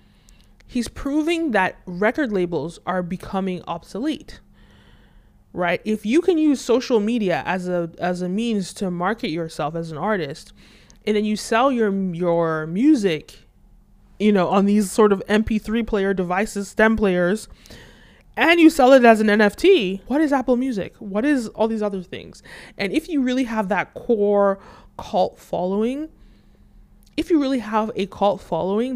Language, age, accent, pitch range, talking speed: English, 20-39, American, 180-230 Hz, 160 wpm